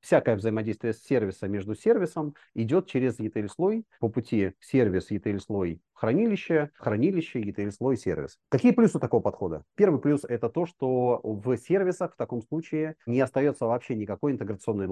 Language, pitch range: Russian, 100-130 Hz